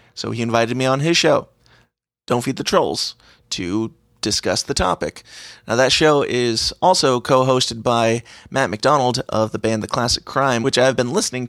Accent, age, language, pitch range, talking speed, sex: American, 30-49, English, 110-130 Hz, 180 wpm, male